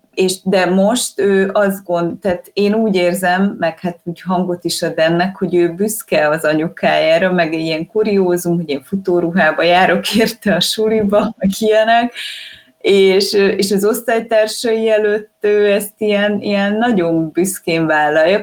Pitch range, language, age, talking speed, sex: 155-195 Hz, Hungarian, 20-39, 150 wpm, female